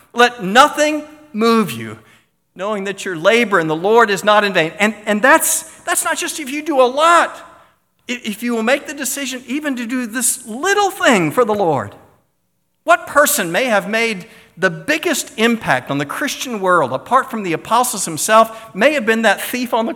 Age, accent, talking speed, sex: 50-69, American, 195 wpm, male